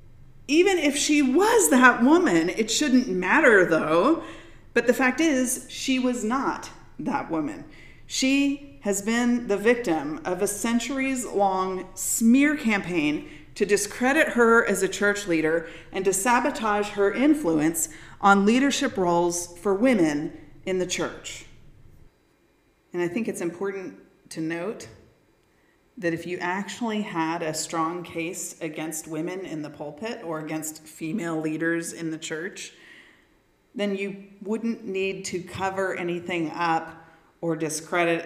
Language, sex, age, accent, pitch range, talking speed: English, female, 30-49, American, 165-235 Hz, 135 wpm